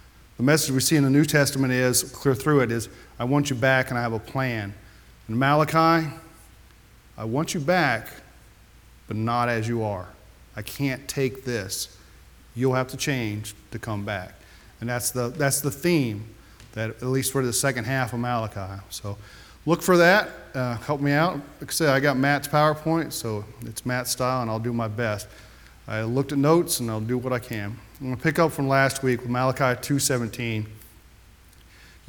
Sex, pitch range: male, 110-145 Hz